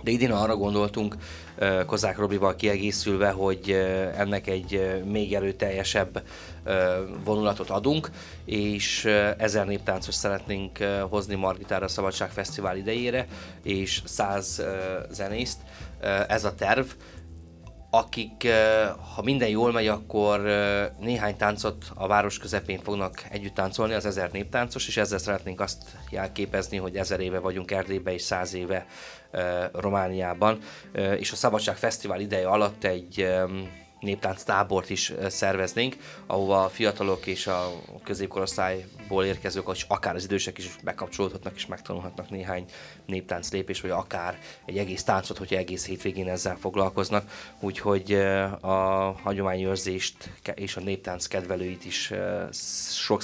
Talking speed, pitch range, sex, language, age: 120 wpm, 95-105 Hz, male, Hungarian, 20-39